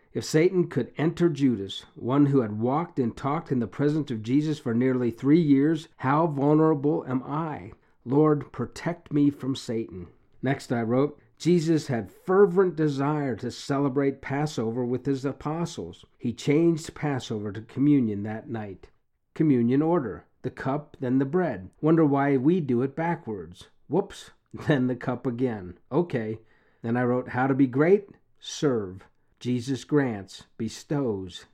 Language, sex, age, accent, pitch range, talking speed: English, male, 50-69, American, 120-150 Hz, 150 wpm